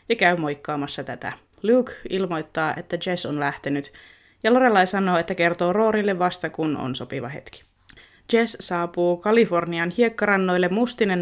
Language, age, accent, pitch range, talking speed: Finnish, 20-39, native, 170-215 Hz, 140 wpm